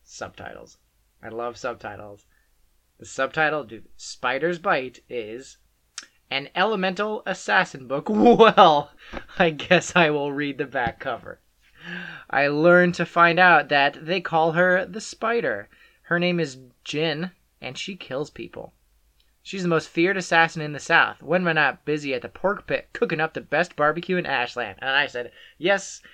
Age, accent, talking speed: 20-39, American, 160 wpm